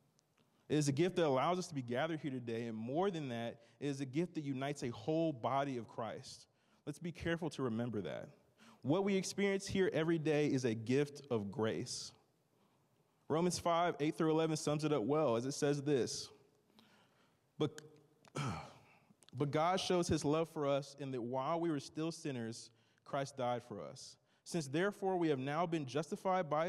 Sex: male